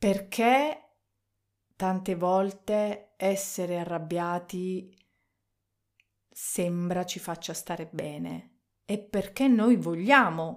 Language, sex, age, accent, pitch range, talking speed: Italian, female, 40-59, native, 170-215 Hz, 80 wpm